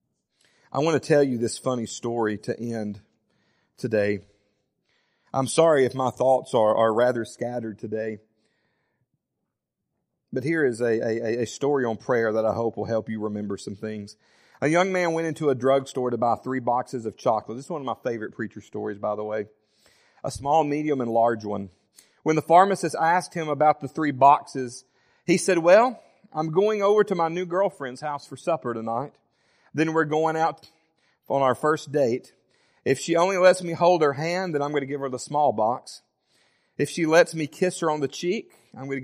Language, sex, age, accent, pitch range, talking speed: English, male, 40-59, American, 115-165 Hz, 200 wpm